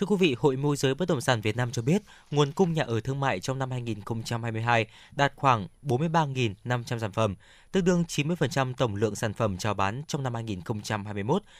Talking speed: 200 wpm